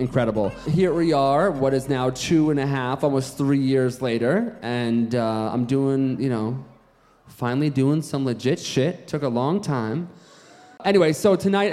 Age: 30-49